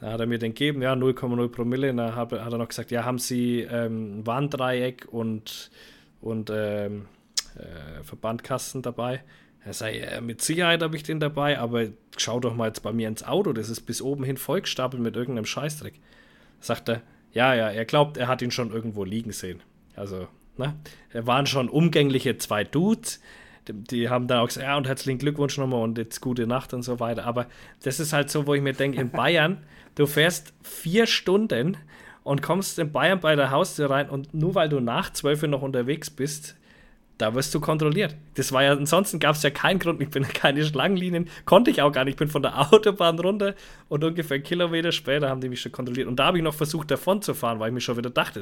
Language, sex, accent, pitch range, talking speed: German, male, German, 115-150 Hz, 220 wpm